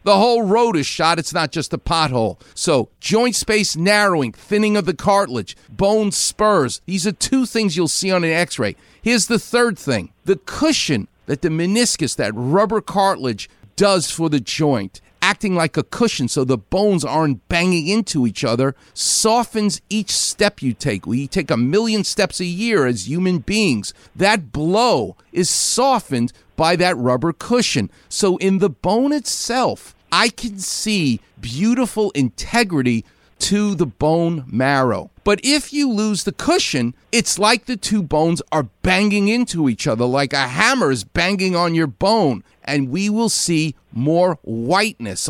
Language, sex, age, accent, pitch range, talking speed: English, male, 50-69, American, 140-210 Hz, 165 wpm